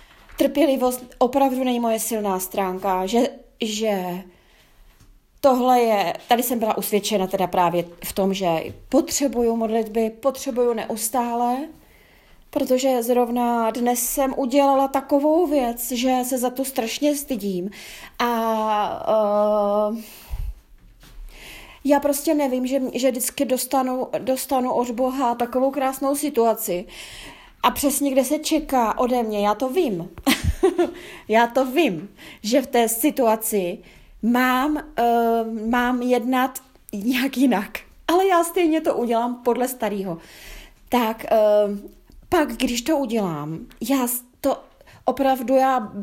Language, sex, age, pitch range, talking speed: Czech, female, 20-39, 225-275 Hz, 115 wpm